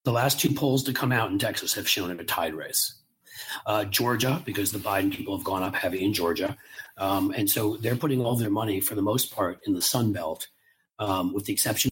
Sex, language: male, English